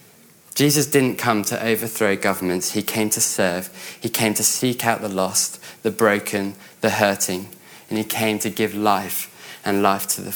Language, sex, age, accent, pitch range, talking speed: English, male, 20-39, British, 105-125 Hz, 180 wpm